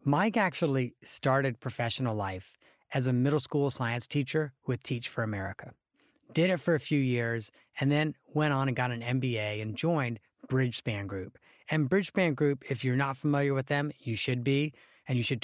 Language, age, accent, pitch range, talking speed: English, 40-59, American, 120-145 Hz, 185 wpm